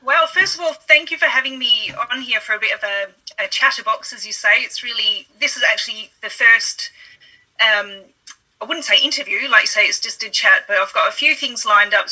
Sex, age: female, 30-49